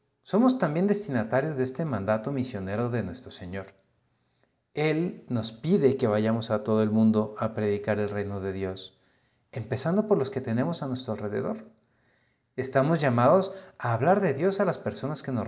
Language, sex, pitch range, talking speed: Spanish, male, 110-150 Hz, 170 wpm